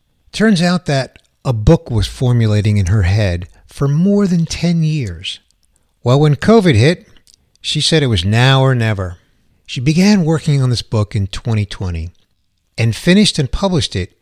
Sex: male